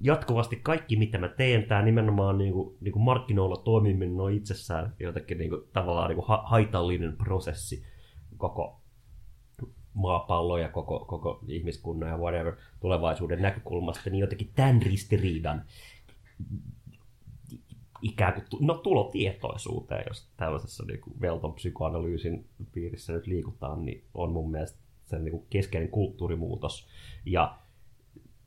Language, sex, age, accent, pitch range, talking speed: Finnish, male, 30-49, native, 90-110 Hz, 125 wpm